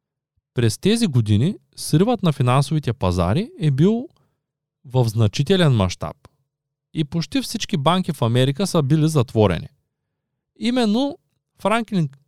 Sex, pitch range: male, 125-175 Hz